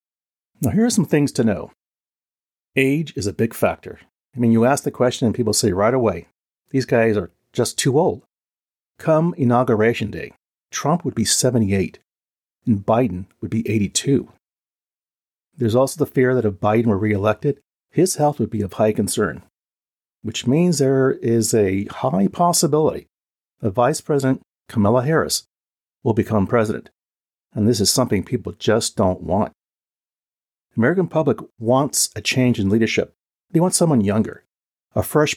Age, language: 40-59, English